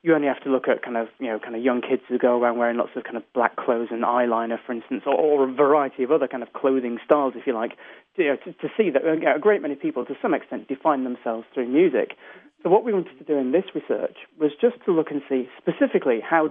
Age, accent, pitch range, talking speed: 40-59, British, 130-160 Hz, 270 wpm